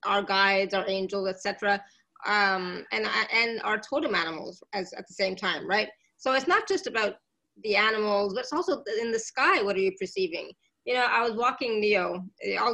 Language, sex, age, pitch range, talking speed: English, female, 20-39, 200-260 Hz, 200 wpm